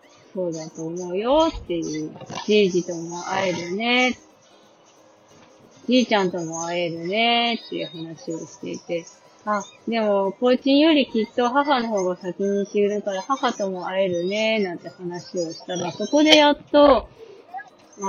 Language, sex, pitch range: Japanese, female, 175-235 Hz